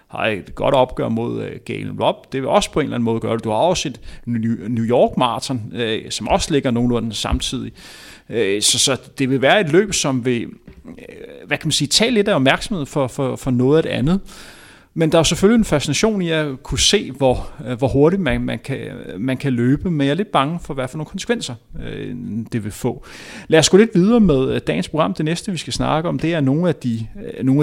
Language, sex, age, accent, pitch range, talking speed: Danish, male, 30-49, native, 125-160 Hz, 220 wpm